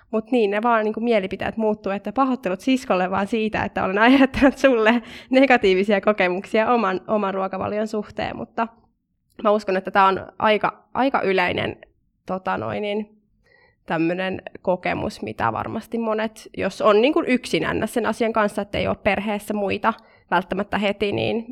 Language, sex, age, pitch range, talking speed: Finnish, female, 20-39, 190-225 Hz, 145 wpm